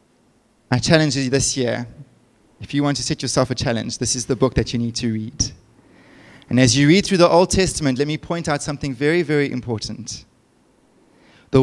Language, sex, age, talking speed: English, male, 20-39, 200 wpm